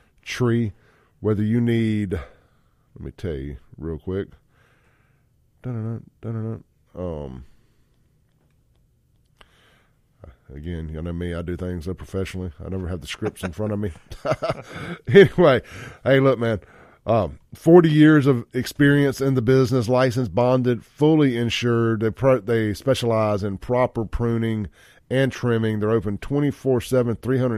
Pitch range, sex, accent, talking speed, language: 100-125 Hz, male, American, 130 wpm, English